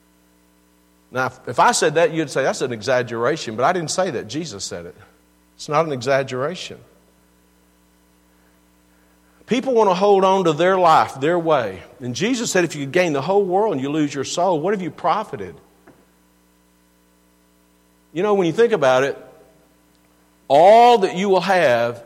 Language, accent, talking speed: English, American, 170 wpm